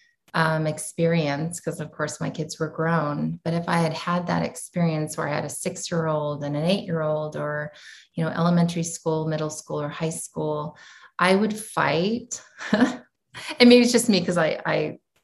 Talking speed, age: 175 wpm, 30-49